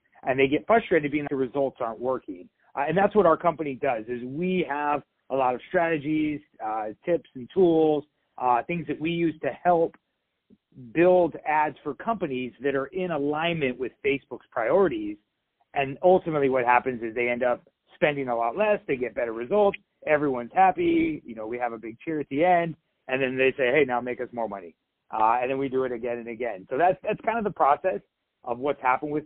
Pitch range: 125-170 Hz